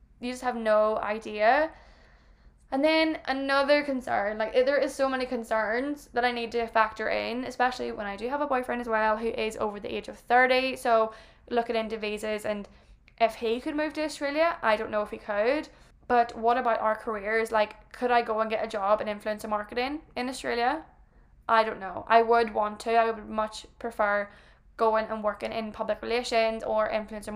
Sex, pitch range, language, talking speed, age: female, 215-245 Hz, English, 200 wpm, 10-29